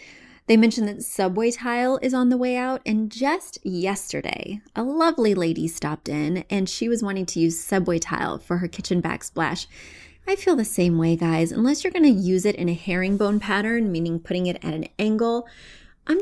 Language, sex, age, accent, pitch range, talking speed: English, female, 20-39, American, 175-245 Hz, 195 wpm